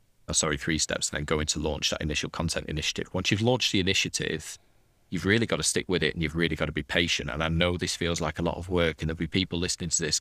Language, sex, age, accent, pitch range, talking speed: English, male, 30-49, British, 80-105 Hz, 280 wpm